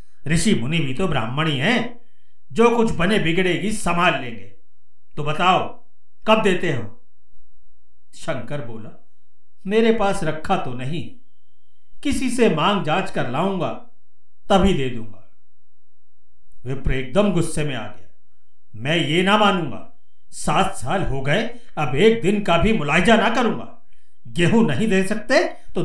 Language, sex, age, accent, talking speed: Hindi, male, 50-69, native, 140 wpm